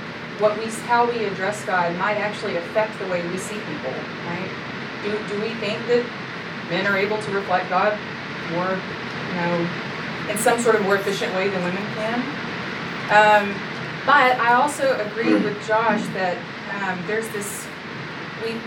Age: 30-49